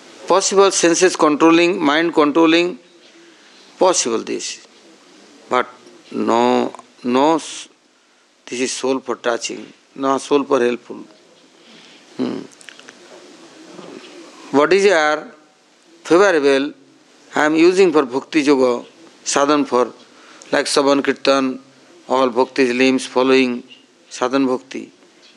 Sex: male